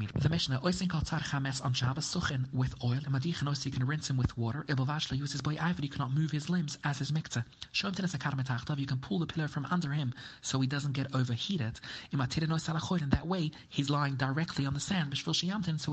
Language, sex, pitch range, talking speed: English, male, 130-160 Hz, 145 wpm